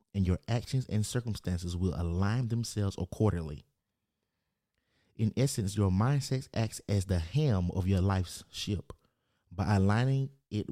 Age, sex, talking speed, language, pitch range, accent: 30-49, male, 135 wpm, English, 90-110 Hz, American